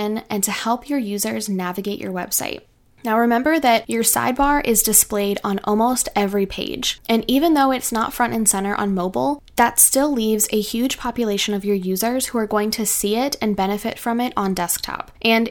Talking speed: 195 wpm